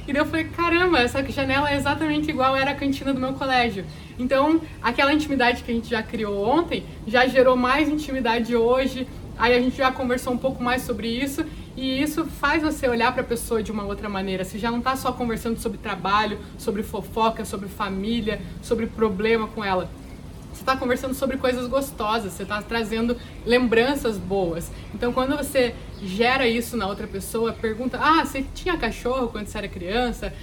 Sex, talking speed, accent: female, 185 wpm, Brazilian